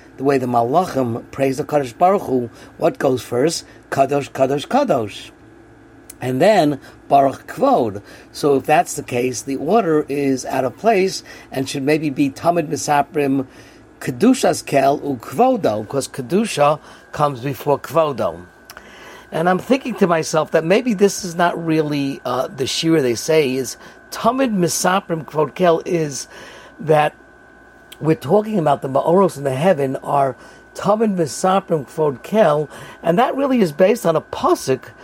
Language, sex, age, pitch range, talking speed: English, male, 50-69, 135-185 Hz, 150 wpm